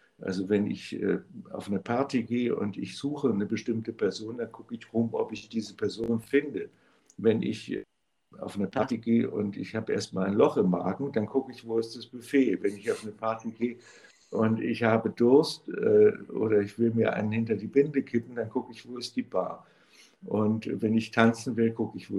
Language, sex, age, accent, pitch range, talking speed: German, male, 60-79, German, 105-120 Hz, 215 wpm